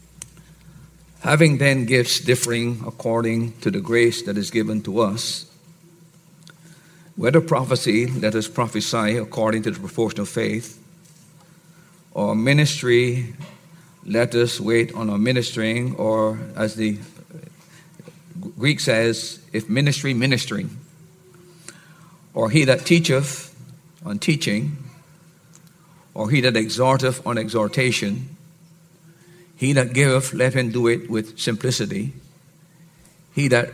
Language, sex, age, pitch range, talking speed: English, male, 50-69, 125-170 Hz, 110 wpm